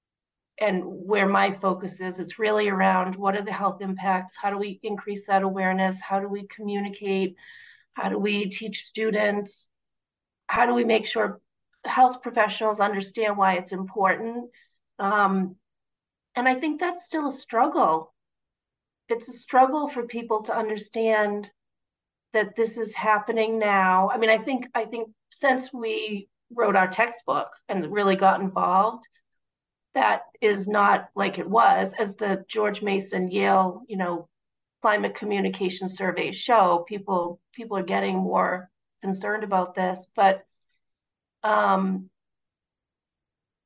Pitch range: 195-230 Hz